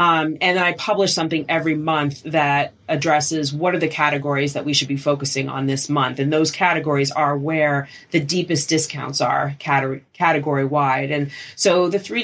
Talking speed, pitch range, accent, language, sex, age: 175 wpm, 145-160 Hz, American, English, female, 30-49